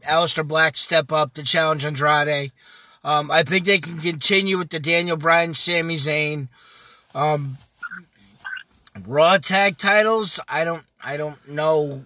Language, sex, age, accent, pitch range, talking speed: English, male, 20-39, American, 155-180 Hz, 140 wpm